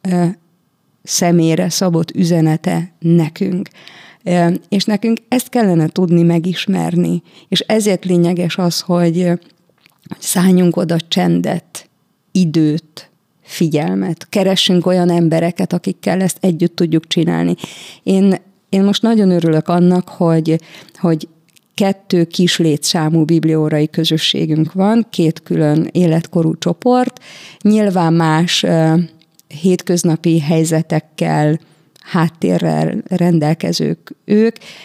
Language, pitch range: Hungarian, 165-195 Hz